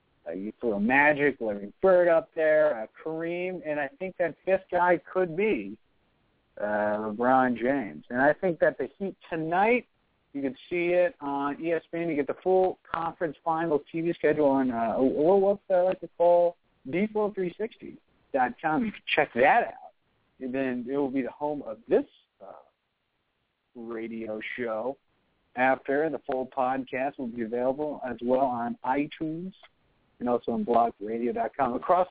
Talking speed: 155 wpm